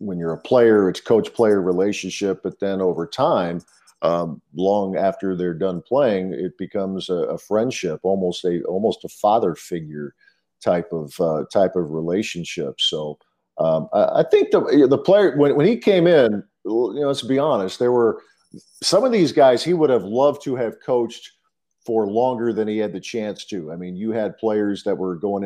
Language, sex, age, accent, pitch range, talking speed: English, male, 50-69, American, 95-115 Hz, 195 wpm